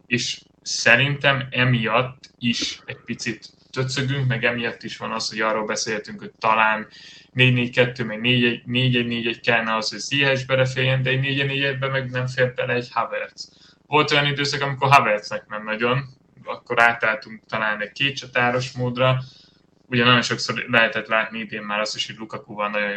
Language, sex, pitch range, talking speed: Hungarian, male, 110-130 Hz, 170 wpm